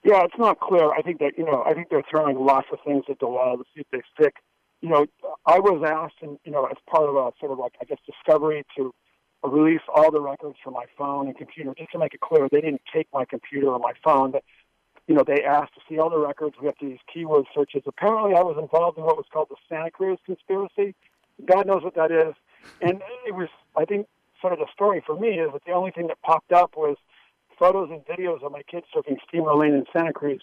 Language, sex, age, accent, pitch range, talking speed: English, male, 50-69, American, 145-185 Hz, 250 wpm